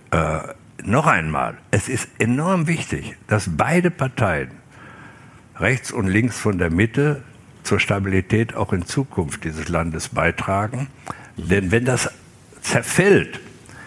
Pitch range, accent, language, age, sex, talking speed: 90-125 Hz, German, English, 60-79, male, 120 wpm